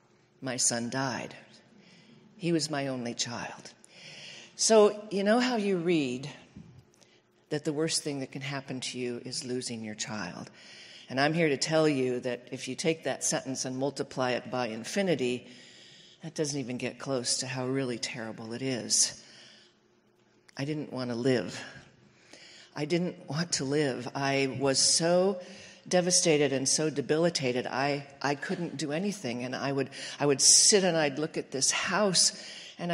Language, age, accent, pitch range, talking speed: English, 50-69, American, 130-175 Hz, 165 wpm